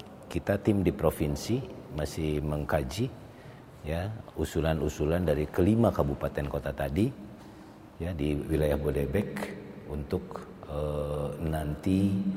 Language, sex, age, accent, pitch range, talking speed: Indonesian, male, 50-69, native, 75-90 Hz, 95 wpm